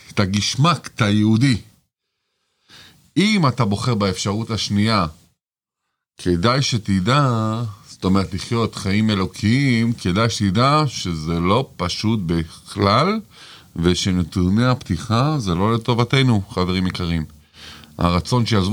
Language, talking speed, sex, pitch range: Hebrew, 100 wpm, male, 85-110 Hz